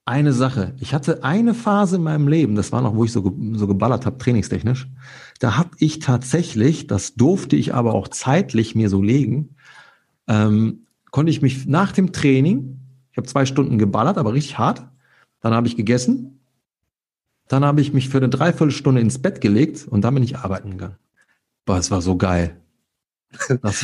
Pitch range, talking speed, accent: 115-140 Hz, 180 wpm, German